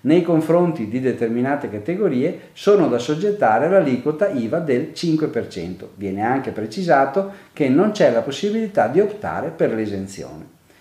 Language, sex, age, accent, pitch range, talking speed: Italian, male, 40-59, native, 120-185 Hz, 135 wpm